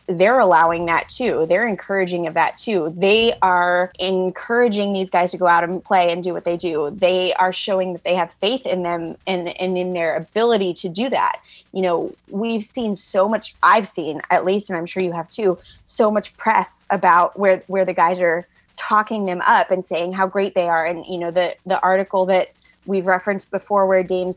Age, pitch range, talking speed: 20-39, 180-200 Hz, 215 wpm